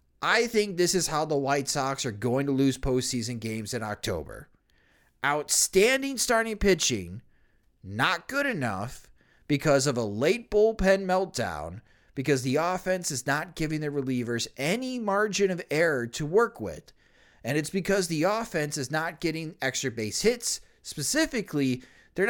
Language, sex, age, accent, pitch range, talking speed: English, male, 30-49, American, 135-210 Hz, 150 wpm